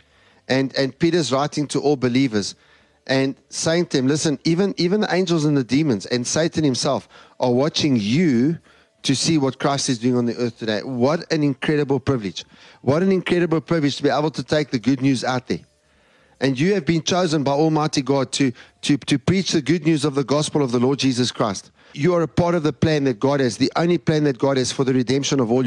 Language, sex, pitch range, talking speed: English, male, 125-155 Hz, 225 wpm